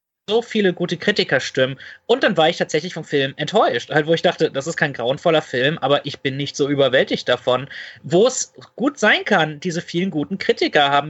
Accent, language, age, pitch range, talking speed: German, German, 20-39, 140-175 Hz, 205 wpm